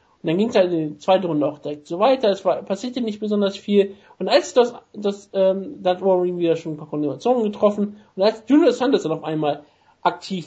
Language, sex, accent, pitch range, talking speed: German, male, German, 160-205 Hz, 230 wpm